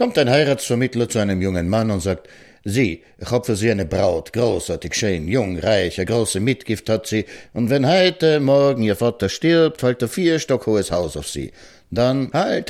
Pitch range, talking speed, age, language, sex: 95-145 Hz, 200 wpm, 60-79, German, male